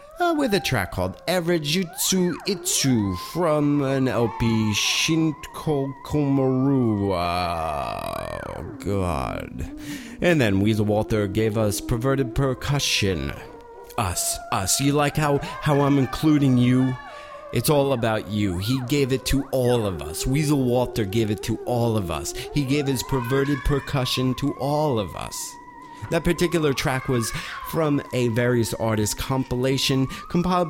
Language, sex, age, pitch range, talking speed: English, male, 30-49, 110-150 Hz, 135 wpm